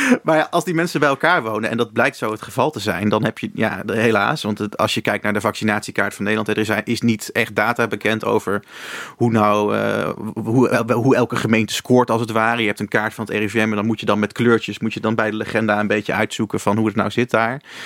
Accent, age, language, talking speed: Dutch, 30-49, Dutch, 260 wpm